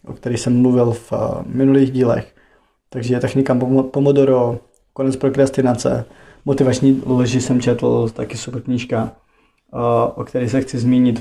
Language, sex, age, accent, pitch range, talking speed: Czech, male, 20-39, native, 120-135 Hz, 150 wpm